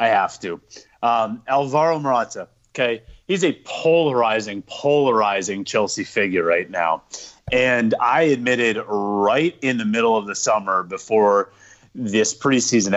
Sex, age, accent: male, 30-49, American